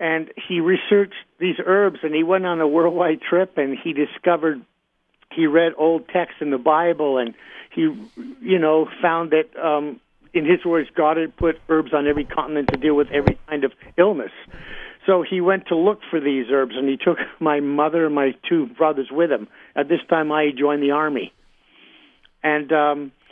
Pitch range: 150-180 Hz